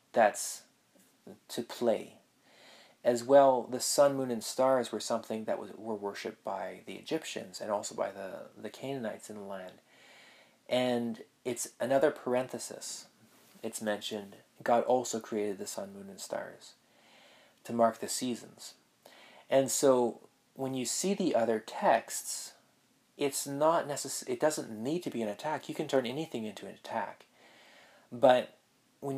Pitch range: 110-140 Hz